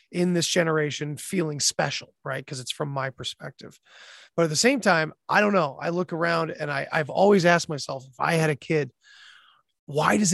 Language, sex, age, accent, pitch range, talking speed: English, male, 30-49, American, 140-180 Hz, 205 wpm